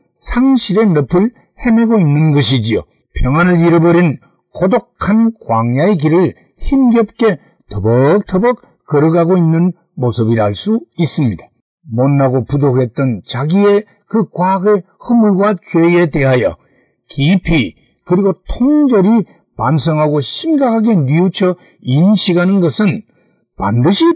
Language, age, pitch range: Korean, 60-79, 140-220 Hz